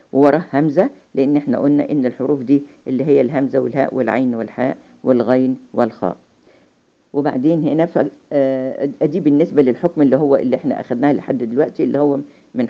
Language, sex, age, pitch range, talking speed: Arabic, female, 50-69, 125-145 Hz, 145 wpm